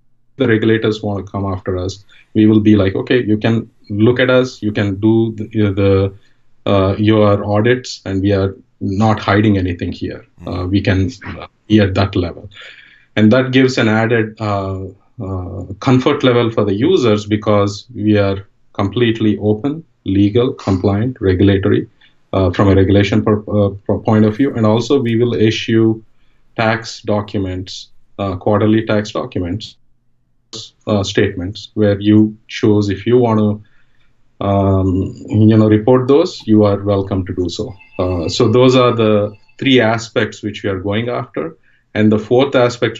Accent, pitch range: Indian, 100-115 Hz